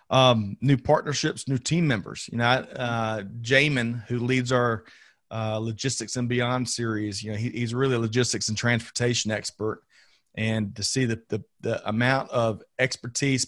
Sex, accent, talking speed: male, American, 165 wpm